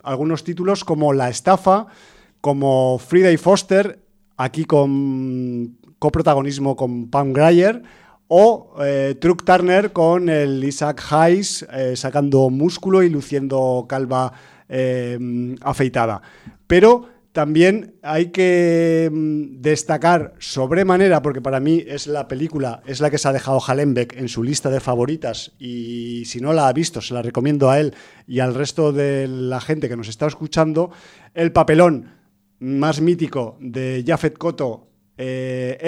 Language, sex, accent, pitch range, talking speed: Spanish, male, Spanish, 135-165 Hz, 140 wpm